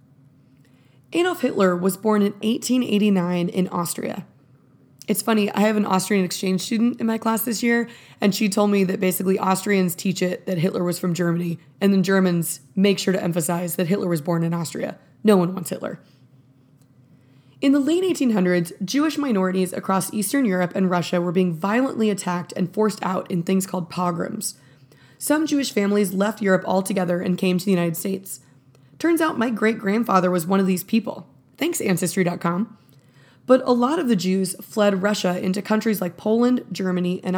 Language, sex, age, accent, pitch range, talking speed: English, female, 20-39, American, 175-215 Hz, 180 wpm